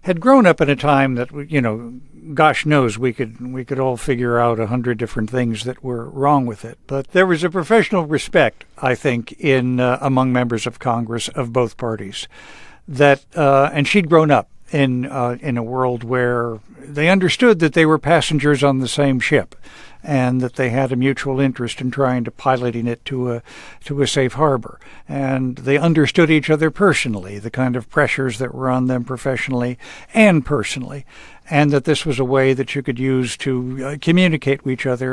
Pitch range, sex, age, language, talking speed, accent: 125-150 Hz, male, 60-79, English, 200 wpm, American